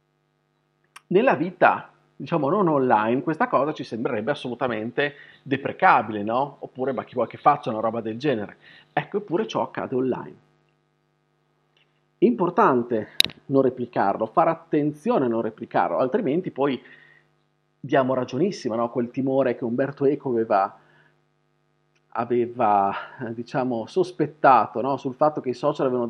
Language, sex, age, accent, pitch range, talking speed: Italian, male, 40-59, native, 115-140 Hz, 130 wpm